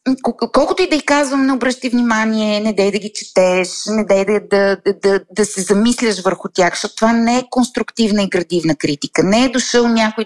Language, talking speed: Bulgarian, 205 wpm